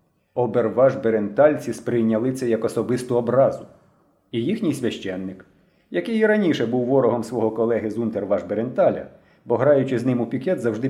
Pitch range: 120-190 Hz